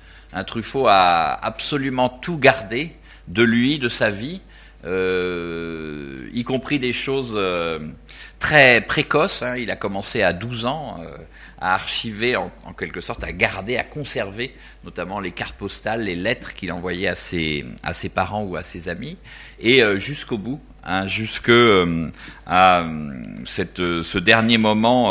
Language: French